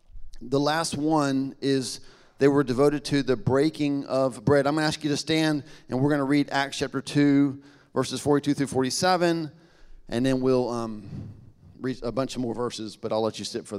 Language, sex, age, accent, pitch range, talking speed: English, male, 40-59, American, 130-155 Hz, 205 wpm